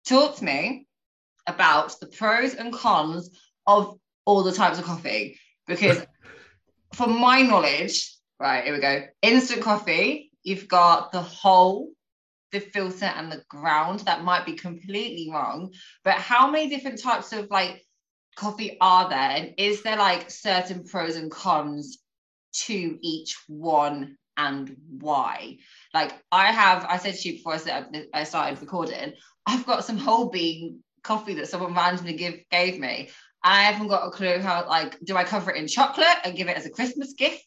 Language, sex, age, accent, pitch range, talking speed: English, female, 20-39, British, 165-220 Hz, 165 wpm